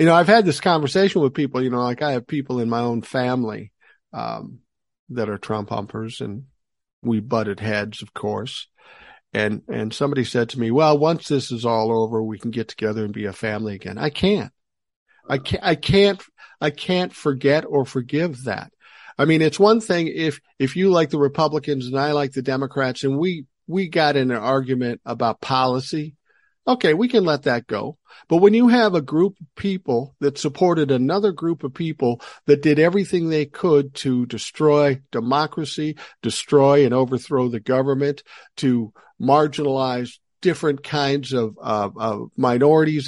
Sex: male